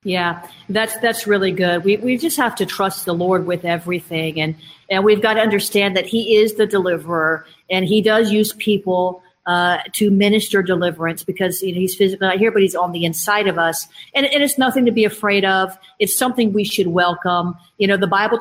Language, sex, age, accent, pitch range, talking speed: English, female, 40-59, American, 185-215 Hz, 215 wpm